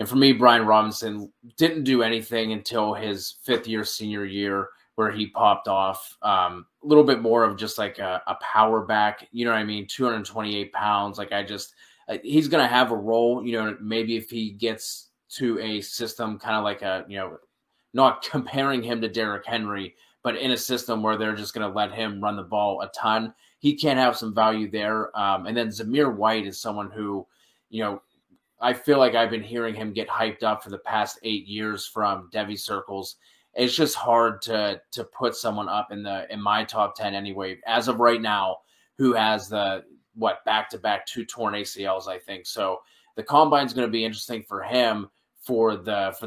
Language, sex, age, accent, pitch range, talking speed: English, male, 20-39, American, 105-120 Hz, 205 wpm